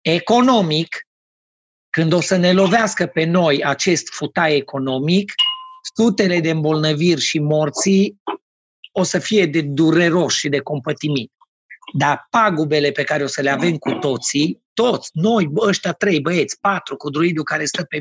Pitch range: 150-190 Hz